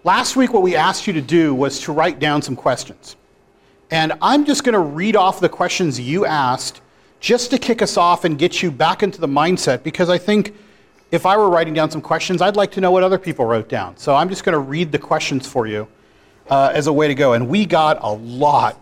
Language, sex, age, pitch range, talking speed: English, male, 40-59, 160-215 Hz, 245 wpm